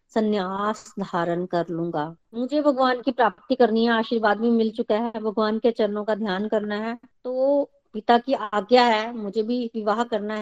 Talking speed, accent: 180 wpm, native